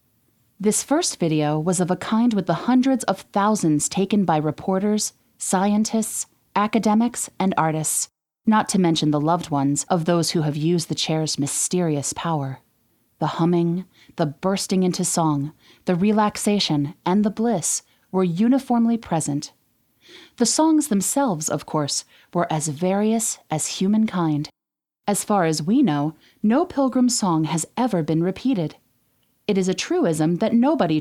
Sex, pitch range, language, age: female, 155-215 Hz, English, 30-49